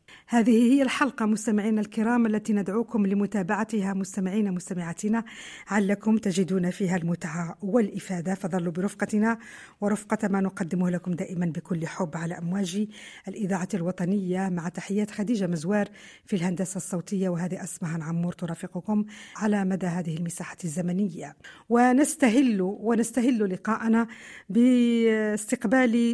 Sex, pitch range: female, 190-230 Hz